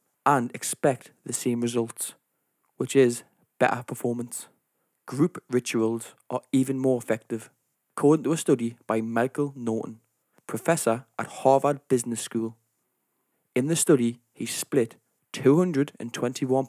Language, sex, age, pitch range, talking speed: English, male, 20-39, 115-135 Hz, 120 wpm